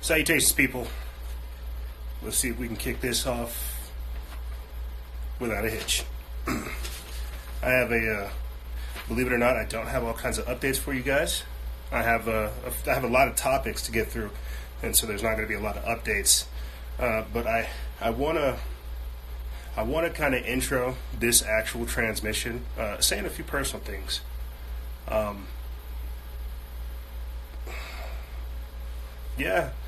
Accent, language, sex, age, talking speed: American, English, male, 30-49, 155 wpm